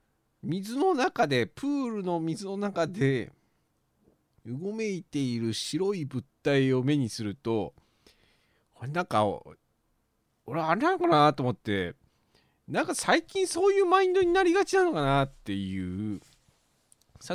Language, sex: Japanese, male